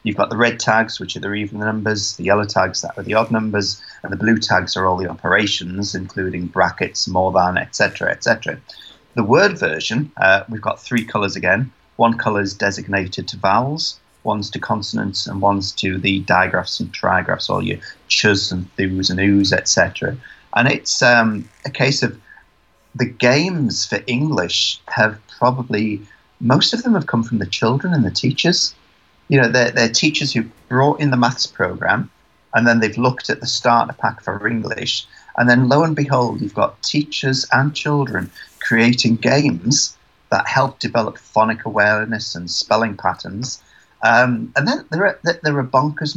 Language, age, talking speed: English, 30-49, 180 wpm